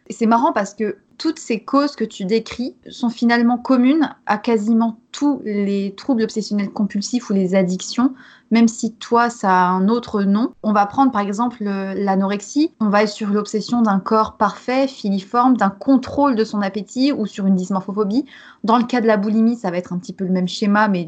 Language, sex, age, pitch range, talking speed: French, female, 20-39, 205-255 Hz, 205 wpm